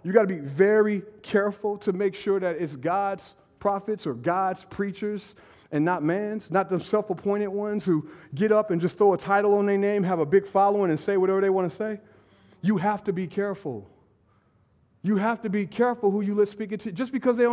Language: English